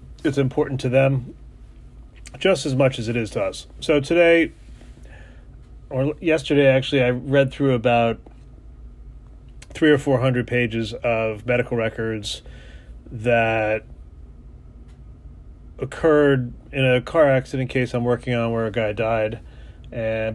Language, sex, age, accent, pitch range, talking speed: English, male, 30-49, American, 110-140 Hz, 125 wpm